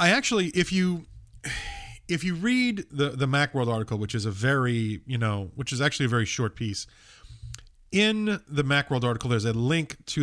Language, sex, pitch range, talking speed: English, male, 115-145 Hz, 190 wpm